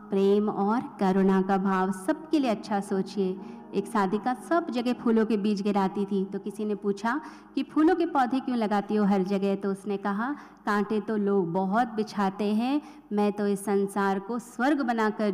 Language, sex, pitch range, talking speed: Hindi, female, 195-245 Hz, 190 wpm